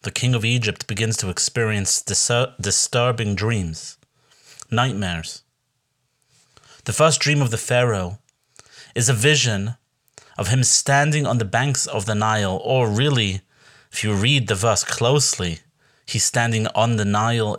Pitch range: 110-140 Hz